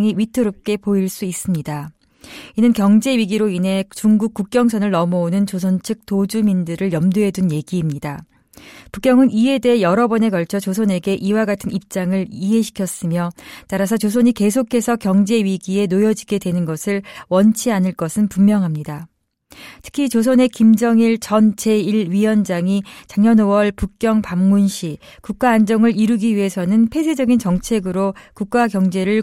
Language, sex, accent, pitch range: Korean, female, native, 185-225 Hz